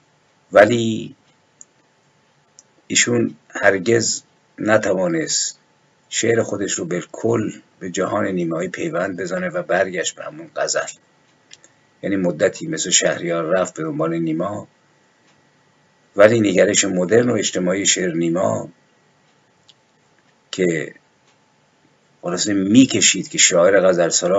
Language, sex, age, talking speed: Persian, male, 50-69, 100 wpm